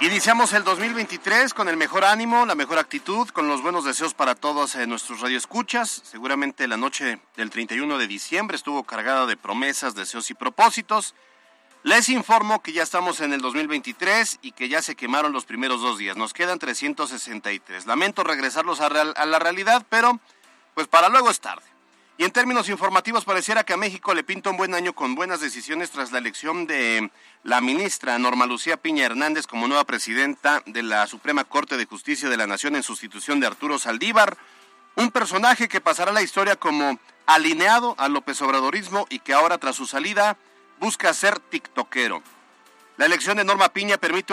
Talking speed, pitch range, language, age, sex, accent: 180 wpm, 135-215 Hz, Spanish, 40-59, male, Mexican